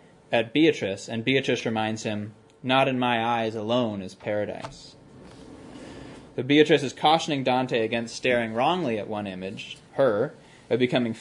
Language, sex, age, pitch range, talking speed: English, male, 20-39, 110-140 Hz, 135 wpm